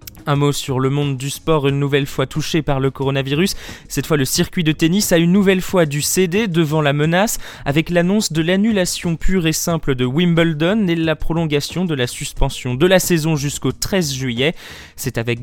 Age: 20-39